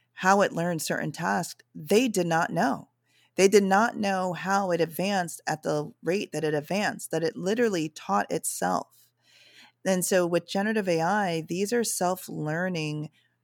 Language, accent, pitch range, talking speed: English, American, 145-185 Hz, 155 wpm